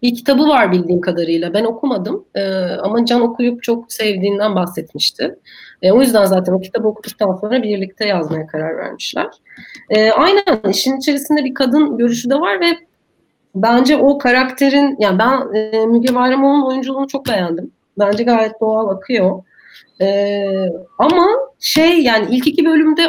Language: Turkish